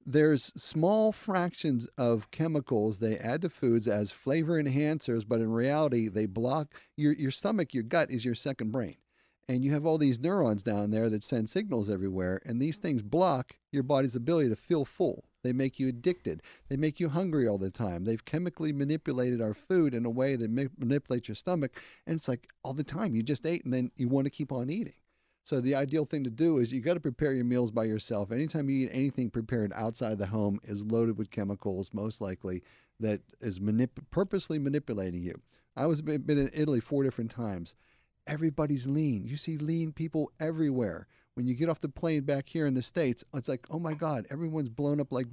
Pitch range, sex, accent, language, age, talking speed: 115-150 Hz, male, American, English, 40-59, 210 wpm